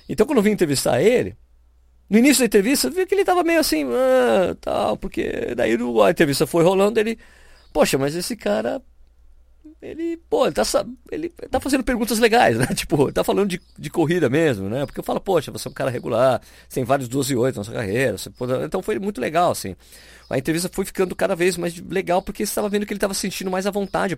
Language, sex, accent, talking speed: Portuguese, male, Brazilian, 225 wpm